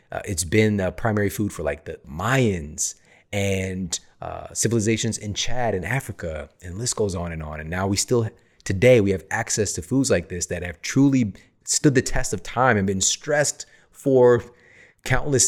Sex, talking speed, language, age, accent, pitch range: male, 190 wpm, English, 30-49, American, 90-115 Hz